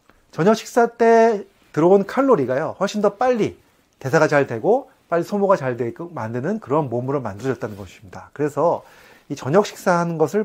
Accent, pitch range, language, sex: native, 120-185 Hz, Korean, male